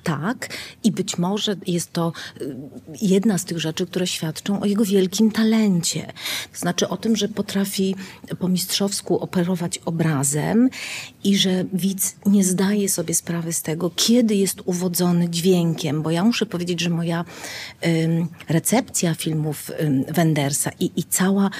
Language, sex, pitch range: Polish, female, 170-205 Hz